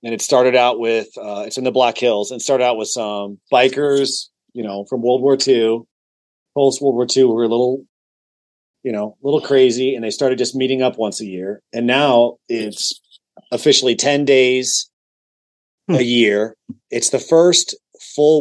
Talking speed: 185 wpm